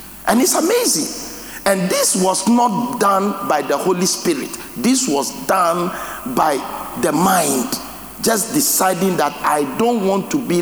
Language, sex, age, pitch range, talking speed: English, male, 50-69, 195-275 Hz, 145 wpm